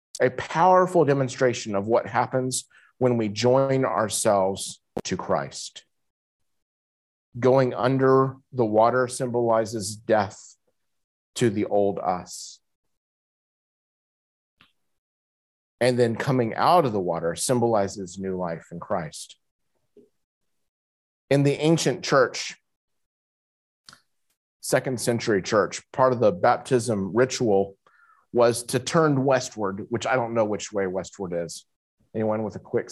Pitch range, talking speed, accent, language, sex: 100-135 Hz, 115 wpm, American, English, male